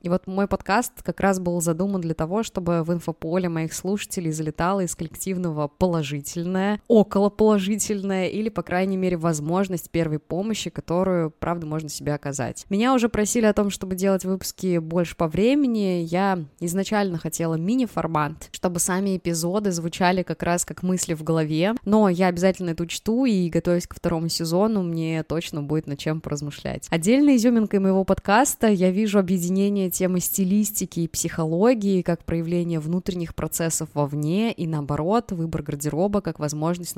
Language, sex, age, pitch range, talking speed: Russian, female, 20-39, 165-195 Hz, 155 wpm